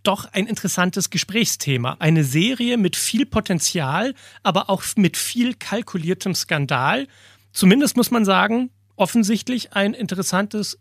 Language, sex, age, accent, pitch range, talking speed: German, male, 30-49, German, 145-195 Hz, 120 wpm